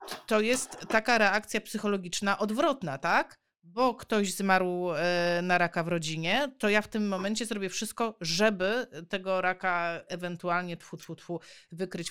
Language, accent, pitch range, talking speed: Polish, native, 190-240 Hz, 145 wpm